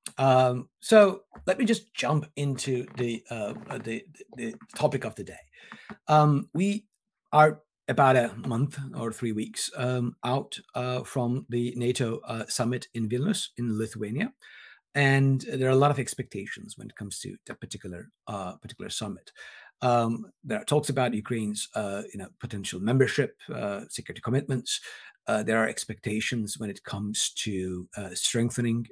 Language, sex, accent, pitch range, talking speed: English, male, British, 105-135 Hz, 160 wpm